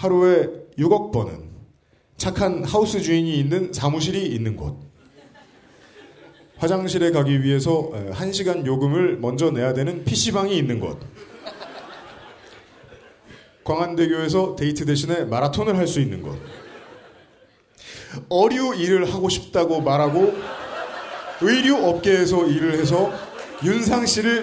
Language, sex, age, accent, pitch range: Korean, male, 30-49, native, 130-185 Hz